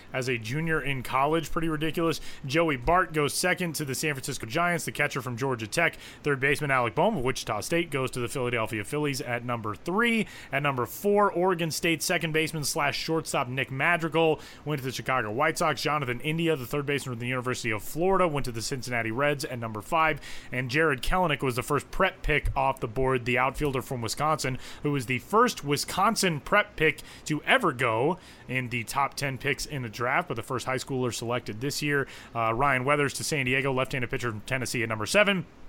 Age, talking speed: 30-49, 210 wpm